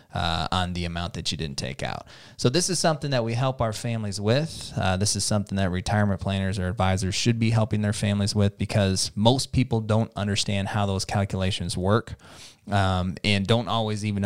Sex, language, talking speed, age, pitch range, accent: male, English, 200 wpm, 20-39, 95-115 Hz, American